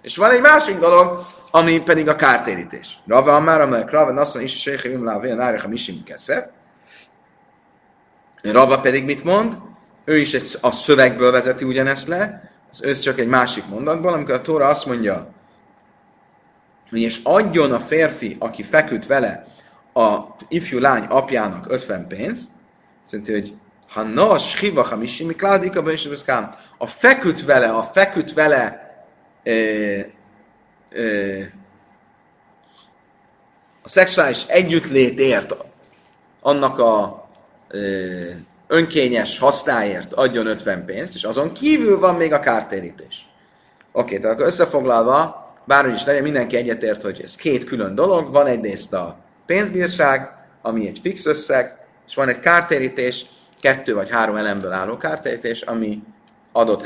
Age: 30-49